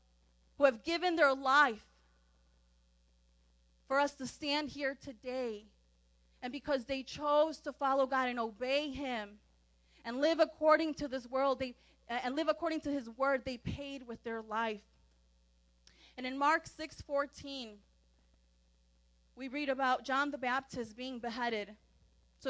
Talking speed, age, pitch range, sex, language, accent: 140 wpm, 30-49, 215-280 Hz, female, English, American